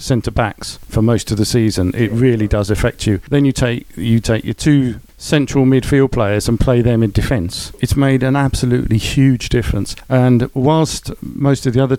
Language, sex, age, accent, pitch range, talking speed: English, male, 50-69, British, 110-130 Hz, 195 wpm